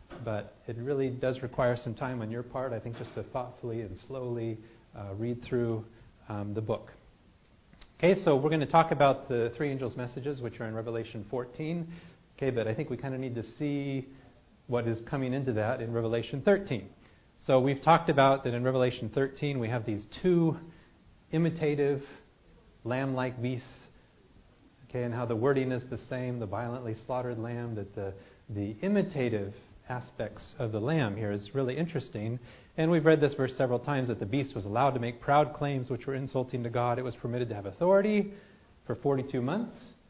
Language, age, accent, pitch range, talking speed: English, 40-59, American, 120-140 Hz, 190 wpm